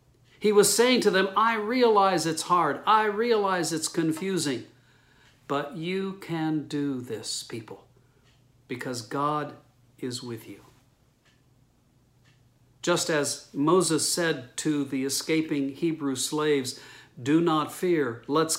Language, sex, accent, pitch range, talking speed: English, male, American, 130-170 Hz, 120 wpm